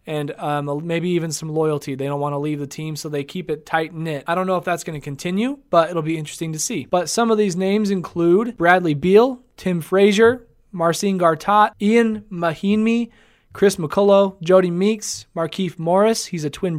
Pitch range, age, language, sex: 160-200 Hz, 20-39, English, male